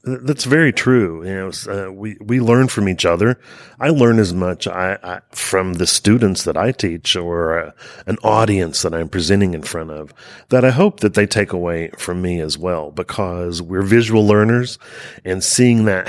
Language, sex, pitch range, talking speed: English, male, 90-115 Hz, 195 wpm